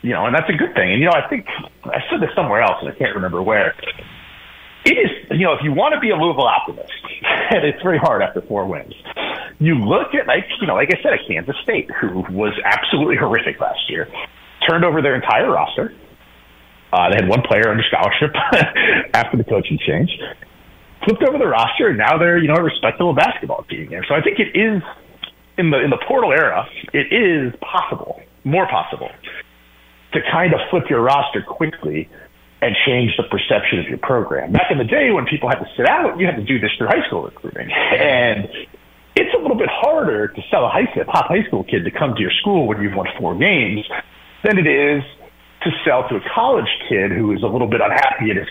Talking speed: 220 wpm